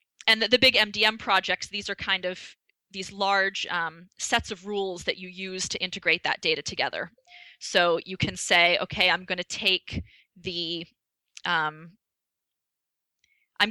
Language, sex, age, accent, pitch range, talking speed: English, female, 20-39, American, 175-205 Hz, 160 wpm